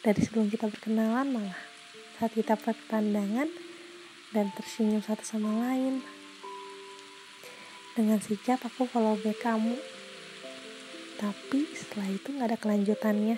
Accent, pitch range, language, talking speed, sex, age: native, 210-255 Hz, Indonesian, 110 wpm, female, 20-39